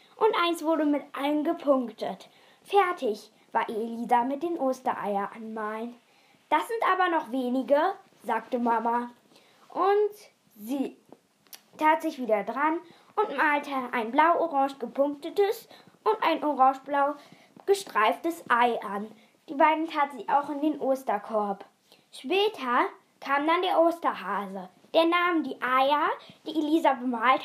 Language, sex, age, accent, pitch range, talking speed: German, female, 10-29, German, 240-320 Hz, 125 wpm